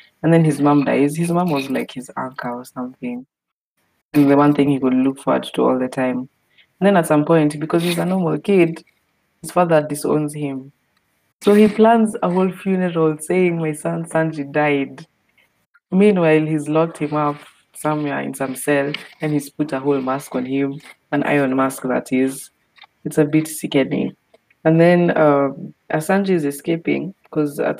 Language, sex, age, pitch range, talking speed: English, female, 20-39, 135-160 Hz, 180 wpm